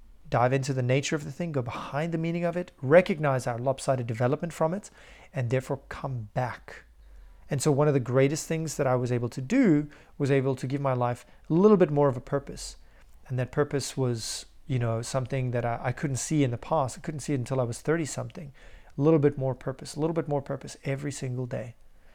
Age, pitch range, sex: 30-49, 125-150 Hz, male